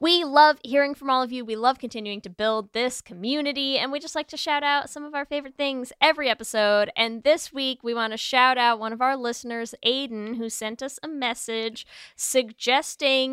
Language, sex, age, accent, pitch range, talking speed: English, female, 10-29, American, 205-275 Hz, 210 wpm